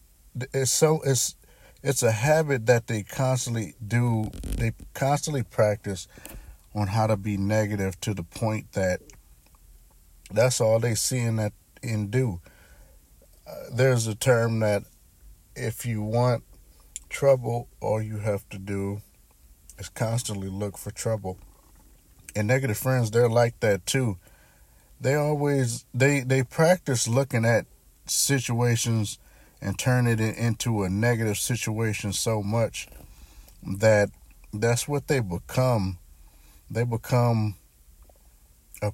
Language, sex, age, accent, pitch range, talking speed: English, male, 50-69, American, 95-120 Hz, 125 wpm